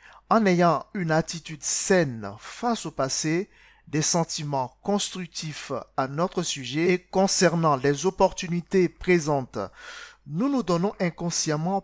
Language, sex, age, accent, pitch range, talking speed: French, male, 50-69, French, 140-180 Hz, 115 wpm